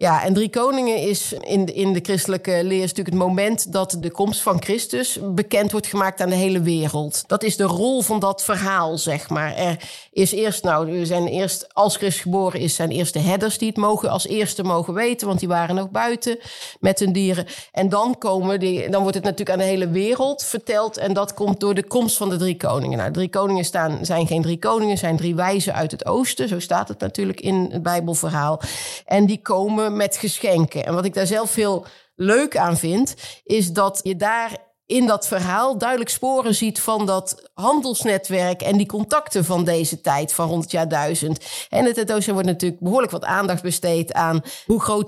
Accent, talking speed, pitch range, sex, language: Dutch, 210 wpm, 180-215 Hz, female, Dutch